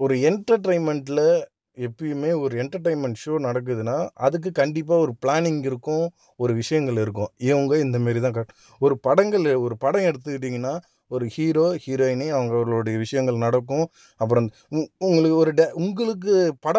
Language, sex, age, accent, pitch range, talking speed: Tamil, male, 30-49, native, 125-165 Hz, 120 wpm